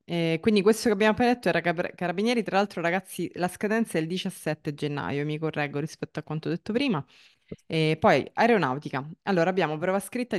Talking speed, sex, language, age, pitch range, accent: 180 wpm, female, Italian, 20-39, 155-195 Hz, native